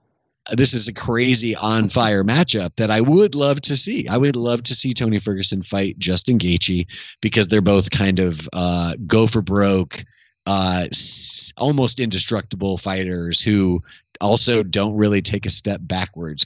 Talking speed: 160 wpm